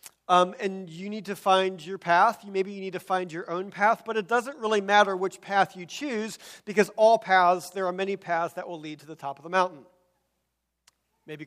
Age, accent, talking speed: 40-59, American, 220 wpm